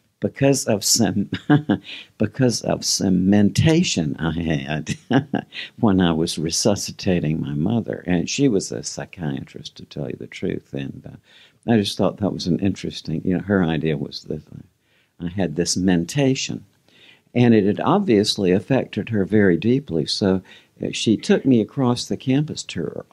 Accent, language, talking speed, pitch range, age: American, English, 160 wpm, 95-130 Hz, 60-79